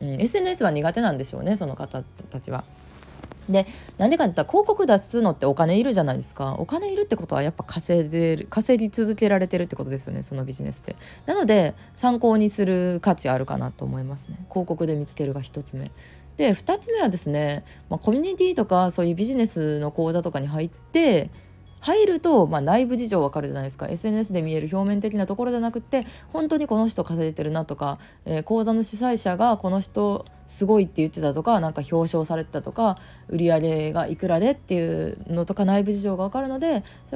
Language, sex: Japanese, female